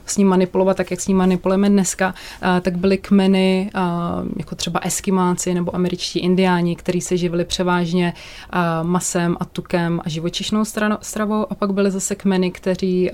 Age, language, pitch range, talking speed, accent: 20-39, Czech, 170-185 Hz, 155 wpm, native